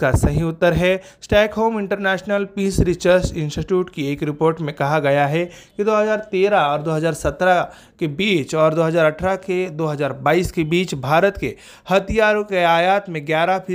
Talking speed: 60 wpm